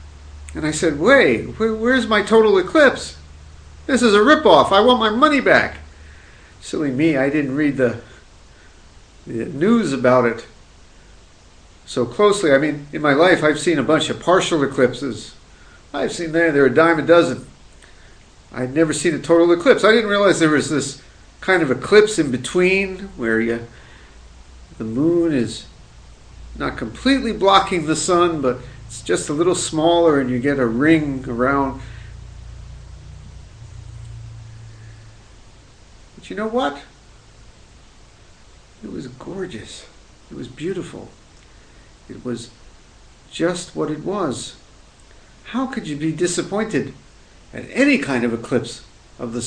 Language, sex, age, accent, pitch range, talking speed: English, male, 50-69, American, 110-170 Hz, 140 wpm